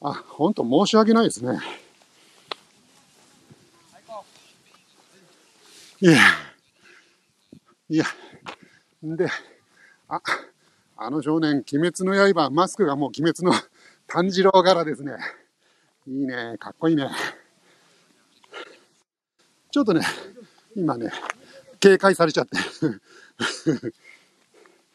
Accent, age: native, 50-69